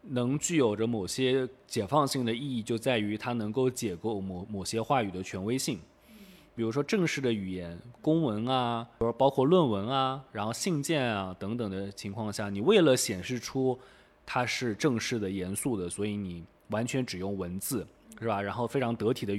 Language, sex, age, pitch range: Chinese, male, 20-39, 105-135 Hz